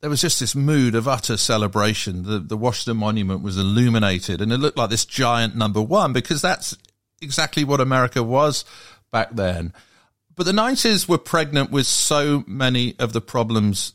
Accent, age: British, 50-69